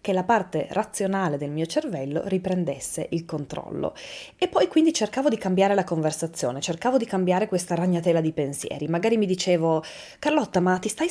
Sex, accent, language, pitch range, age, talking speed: female, native, Italian, 170-255 Hz, 20-39, 175 wpm